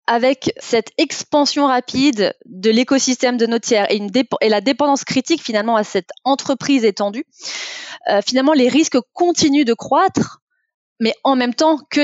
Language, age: French, 20-39